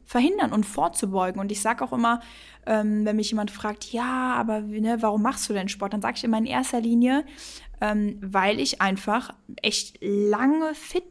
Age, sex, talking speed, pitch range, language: 10-29, female, 185 wpm, 200-235 Hz, German